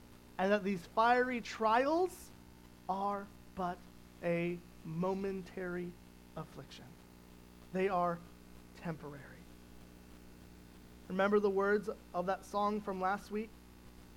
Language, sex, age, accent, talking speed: English, male, 30-49, American, 95 wpm